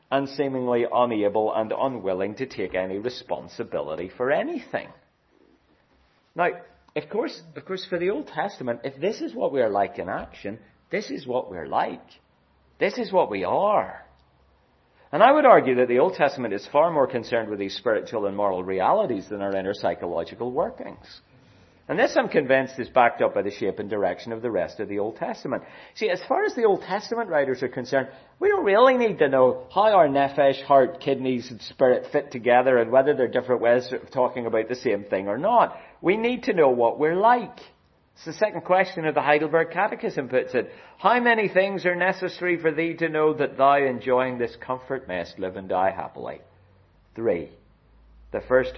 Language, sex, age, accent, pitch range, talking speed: English, male, 40-59, British, 105-165 Hz, 195 wpm